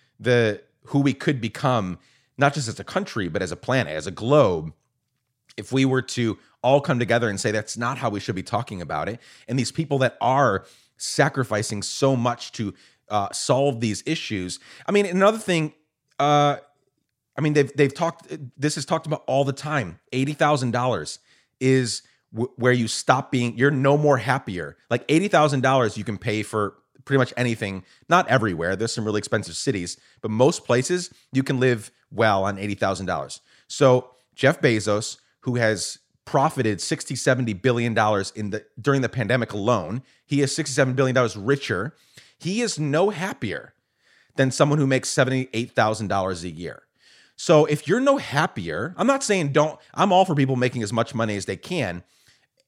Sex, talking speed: male, 170 wpm